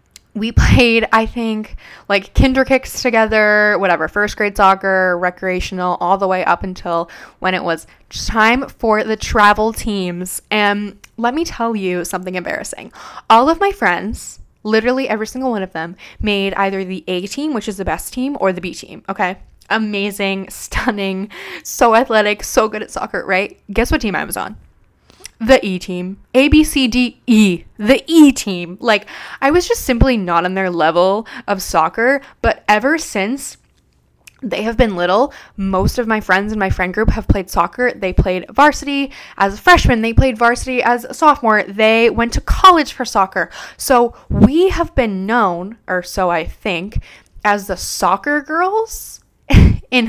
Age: 10-29